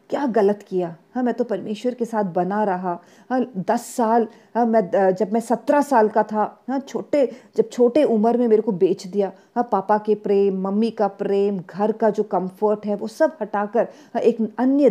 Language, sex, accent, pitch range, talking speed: Hindi, female, native, 195-240 Hz, 195 wpm